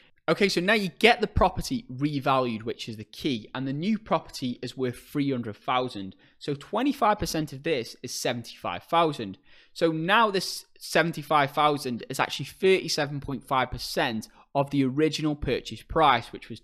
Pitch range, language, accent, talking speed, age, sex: 130-165 Hz, English, British, 165 wpm, 20-39, male